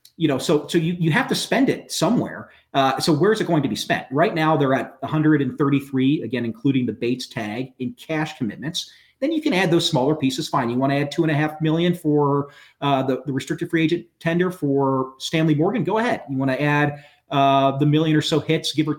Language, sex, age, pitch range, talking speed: English, male, 30-49, 135-175 Hz, 235 wpm